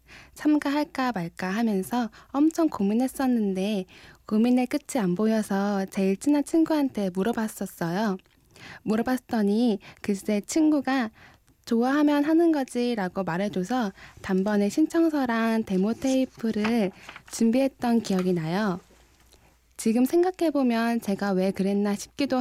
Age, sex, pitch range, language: 10-29, female, 195-250 Hz, Korean